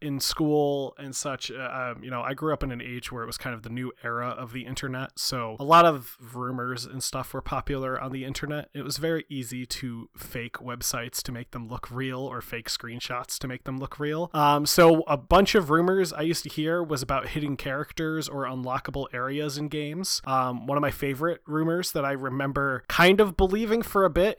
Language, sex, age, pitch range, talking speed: English, male, 20-39, 125-155 Hz, 220 wpm